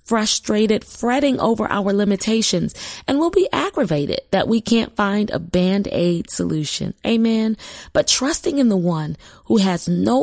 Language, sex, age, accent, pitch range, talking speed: English, female, 30-49, American, 175-230 Hz, 145 wpm